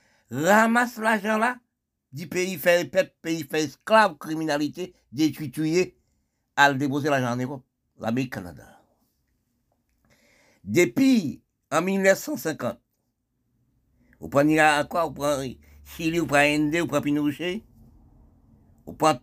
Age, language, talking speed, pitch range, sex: 60-79, French, 120 wpm, 125-170 Hz, male